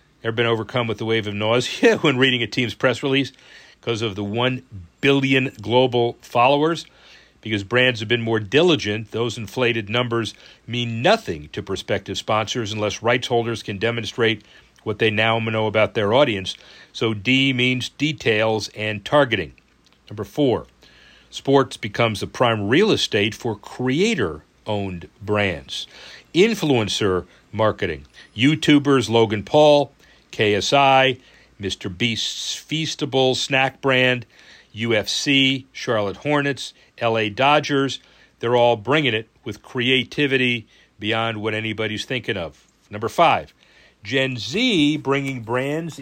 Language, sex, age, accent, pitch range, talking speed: English, male, 40-59, American, 110-135 Hz, 125 wpm